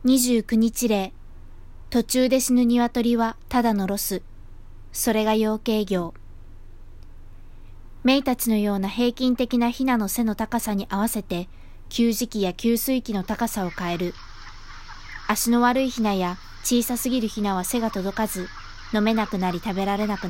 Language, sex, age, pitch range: Japanese, female, 20-39, 185-235 Hz